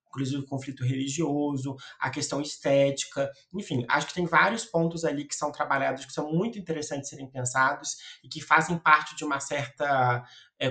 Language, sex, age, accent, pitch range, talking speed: Portuguese, male, 20-39, Brazilian, 130-155 Hz, 180 wpm